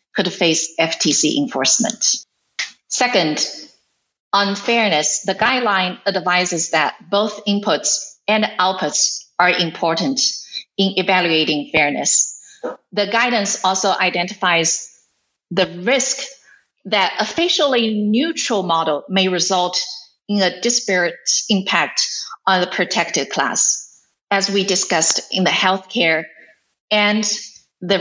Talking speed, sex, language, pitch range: 105 wpm, female, English, 175-215 Hz